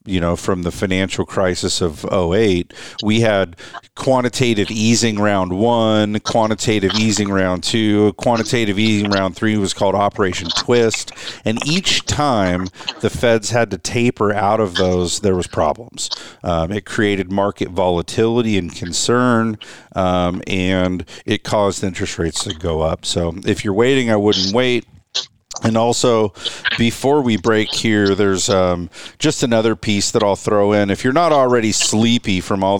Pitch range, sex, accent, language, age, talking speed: 95-115 Hz, male, American, English, 50-69, 155 wpm